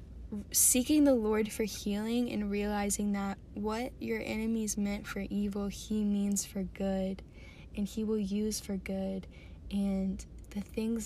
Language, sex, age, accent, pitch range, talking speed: English, female, 10-29, American, 190-220 Hz, 145 wpm